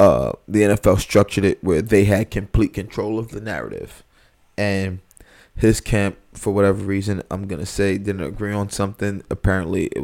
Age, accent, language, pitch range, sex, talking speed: 20-39, American, English, 95-105 Hz, male, 165 wpm